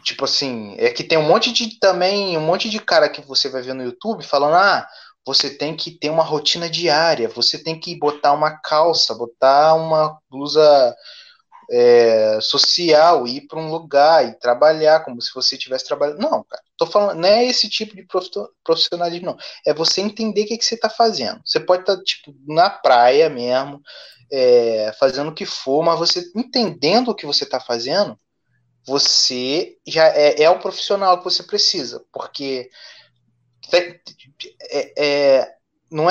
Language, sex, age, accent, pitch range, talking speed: Portuguese, male, 20-39, Brazilian, 140-220 Hz, 170 wpm